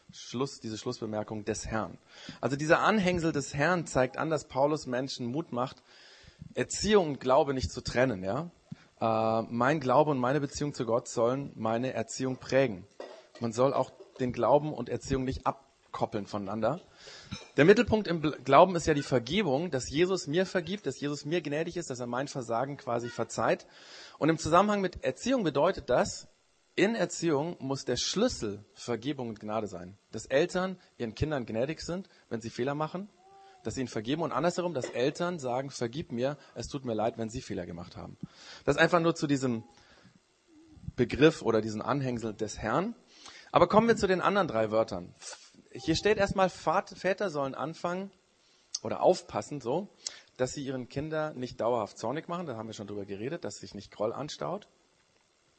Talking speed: 175 wpm